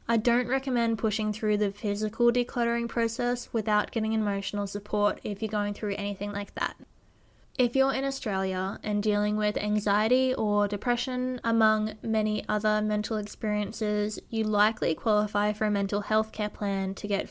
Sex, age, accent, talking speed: female, 10-29, Australian, 160 wpm